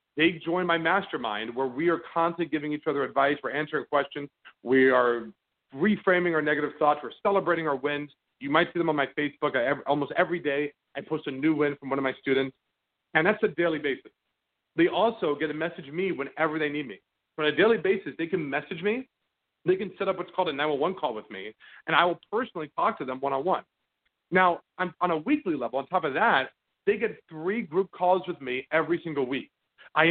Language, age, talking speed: English, 40-59, 220 wpm